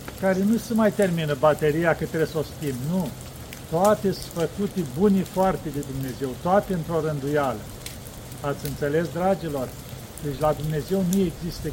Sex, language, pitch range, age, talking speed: male, Romanian, 140-185 Hz, 50-69, 155 wpm